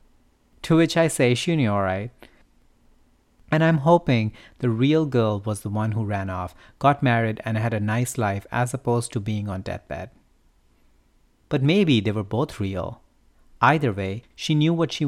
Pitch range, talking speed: 100-125 Hz, 180 wpm